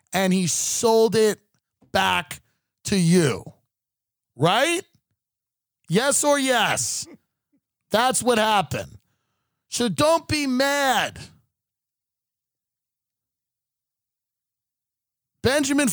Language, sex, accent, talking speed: English, male, American, 70 wpm